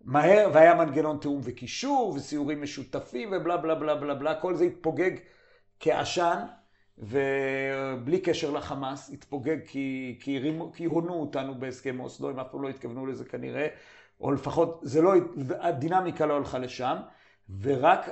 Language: Hebrew